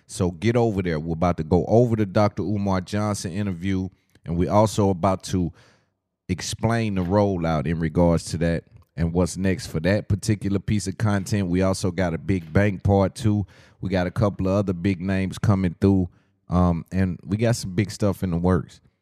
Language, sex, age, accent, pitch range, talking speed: English, male, 30-49, American, 85-100 Hz, 200 wpm